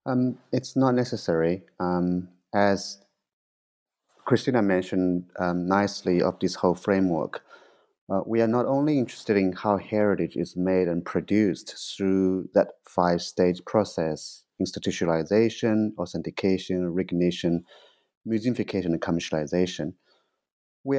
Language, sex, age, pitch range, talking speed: English, male, 30-49, 90-105 Hz, 110 wpm